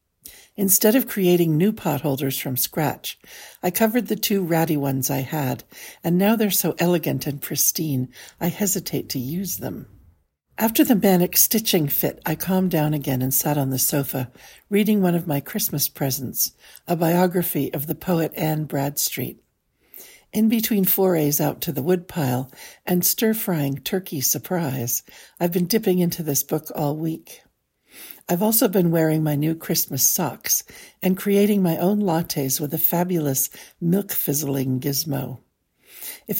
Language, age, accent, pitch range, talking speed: English, 60-79, American, 145-195 Hz, 150 wpm